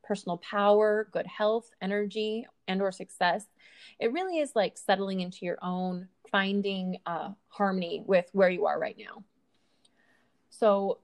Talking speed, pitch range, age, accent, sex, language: 140 wpm, 190-235 Hz, 30-49, American, female, English